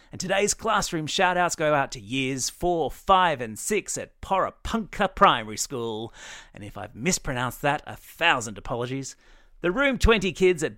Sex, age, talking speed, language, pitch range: male, 40-59, 160 wpm, English, 120-175 Hz